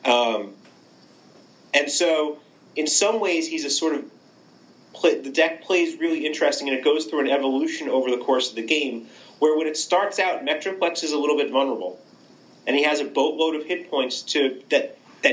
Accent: American